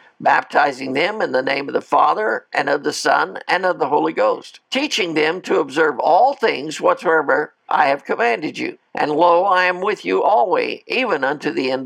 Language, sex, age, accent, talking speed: English, male, 60-79, American, 195 wpm